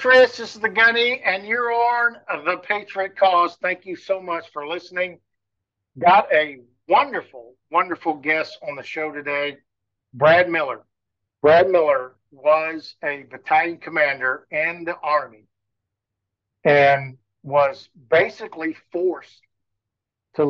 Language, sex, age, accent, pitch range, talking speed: English, male, 60-79, American, 125-170 Hz, 120 wpm